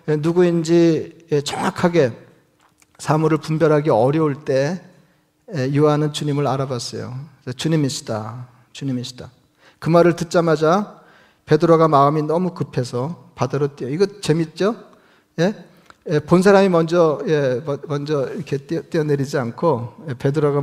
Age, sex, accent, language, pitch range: 40-59, male, native, Korean, 140-175 Hz